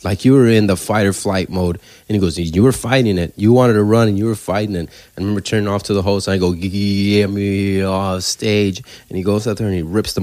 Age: 30-49